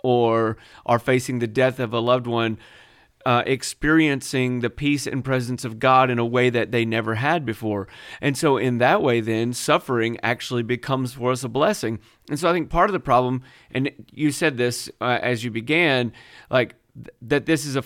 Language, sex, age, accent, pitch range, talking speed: English, male, 40-59, American, 115-135 Hz, 190 wpm